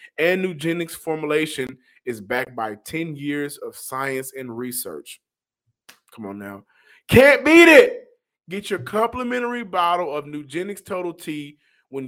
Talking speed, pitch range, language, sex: 135 wpm, 130-185 Hz, English, male